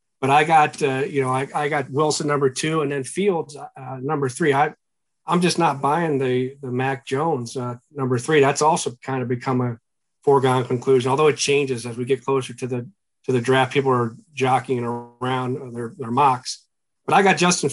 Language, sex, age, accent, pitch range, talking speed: English, male, 40-59, American, 130-155 Hz, 205 wpm